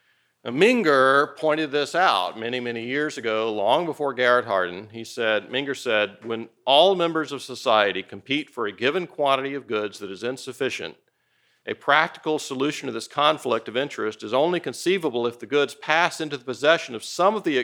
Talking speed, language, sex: 180 wpm, English, male